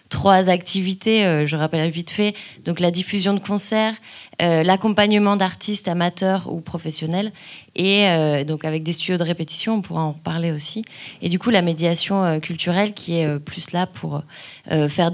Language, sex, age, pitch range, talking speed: French, female, 20-39, 160-190 Hz, 180 wpm